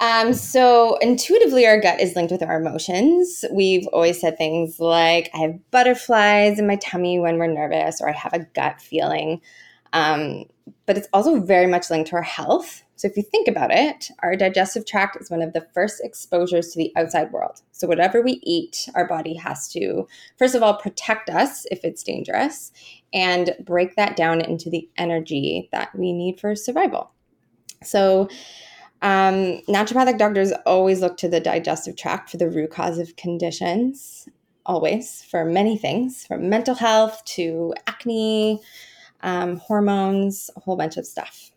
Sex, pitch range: female, 170-220 Hz